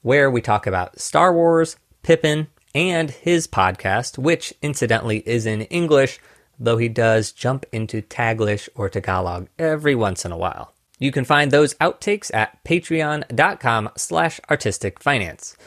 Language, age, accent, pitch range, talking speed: English, 30-49, American, 110-165 Hz, 140 wpm